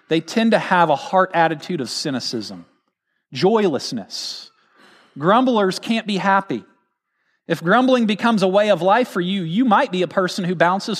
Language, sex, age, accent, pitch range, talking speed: English, male, 40-59, American, 170-225 Hz, 165 wpm